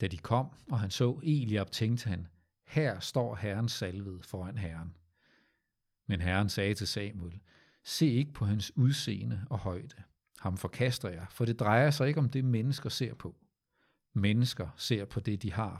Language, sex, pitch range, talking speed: Danish, male, 95-120 Hz, 175 wpm